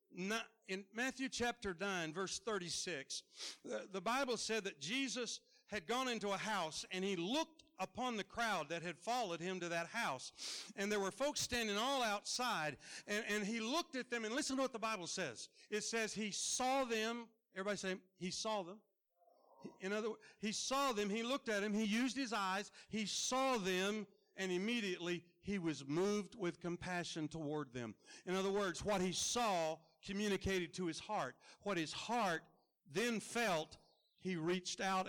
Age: 60-79